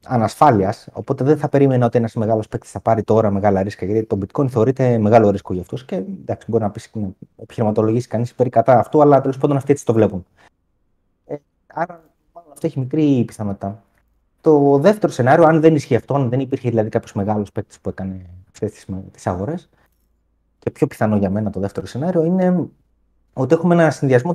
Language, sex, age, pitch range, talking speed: Greek, male, 30-49, 100-145 Hz, 195 wpm